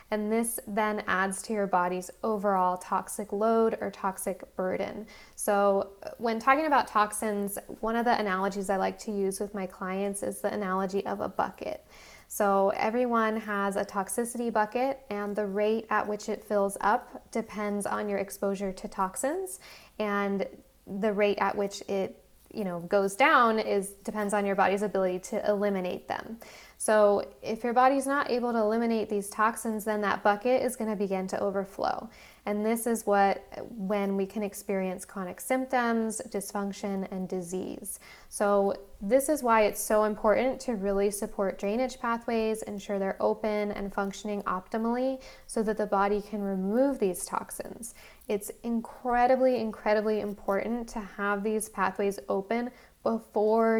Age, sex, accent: 10-29, female, American